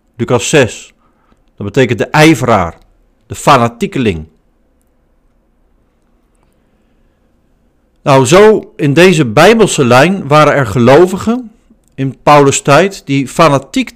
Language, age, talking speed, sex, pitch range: Dutch, 50-69, 90 wpm, male, 130-195 Hz